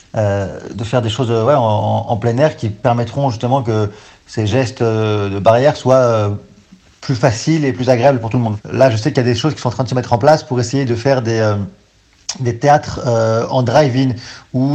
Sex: male